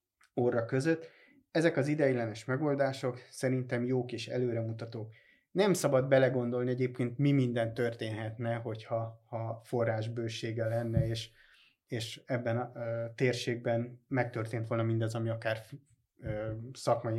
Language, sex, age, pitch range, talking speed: Hungarian, male, 30-49, 115-145 Hz, 115 wpm